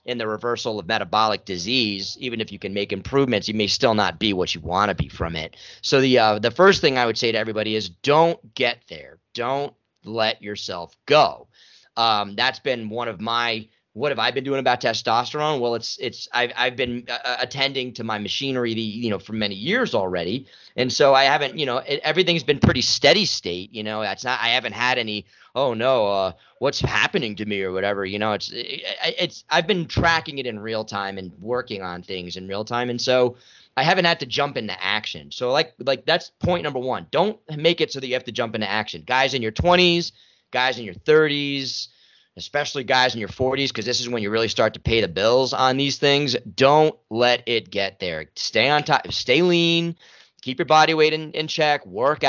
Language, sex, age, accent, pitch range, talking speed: English, male, 30-49, American, 110-140 Hz, 225 wpm